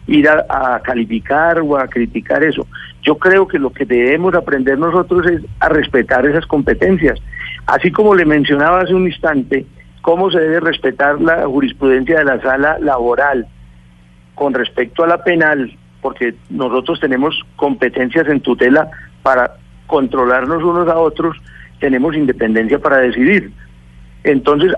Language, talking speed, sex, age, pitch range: Spanish, 145 wpm, male, 50-69, 125-165 Hz